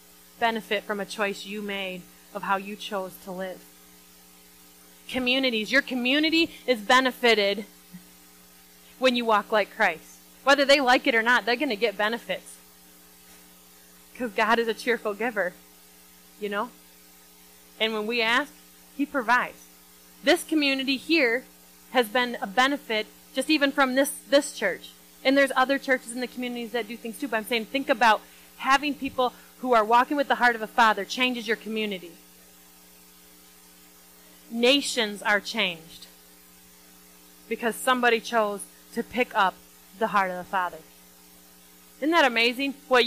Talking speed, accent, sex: 150 wpm, American, female